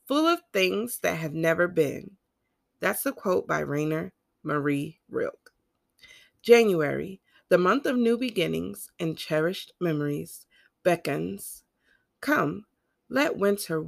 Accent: American